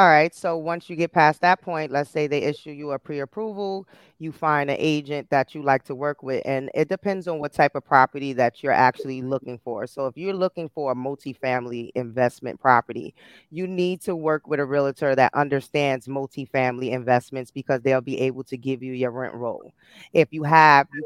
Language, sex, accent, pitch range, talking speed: English, female, American, 130-155 Hz, 205 wpm